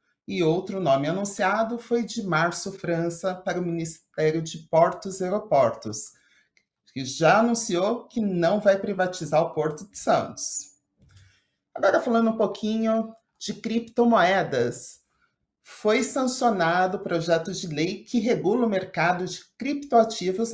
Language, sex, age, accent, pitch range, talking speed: Portuguese, male, 30-49, Brazilian, 160-210 Hz, 130 wpm